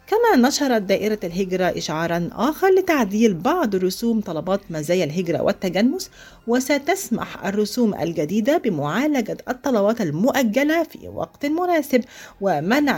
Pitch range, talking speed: 165-255 Hz, 105 wpm